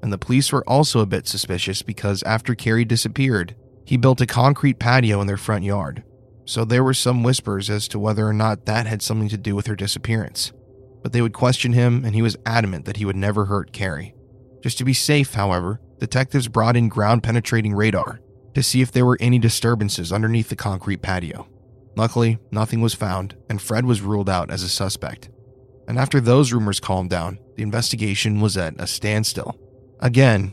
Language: English